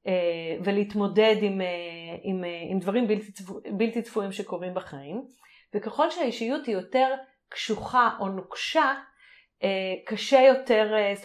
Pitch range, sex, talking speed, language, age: 190-250 Hz, female, 135 wpm, Hebrew, 30-49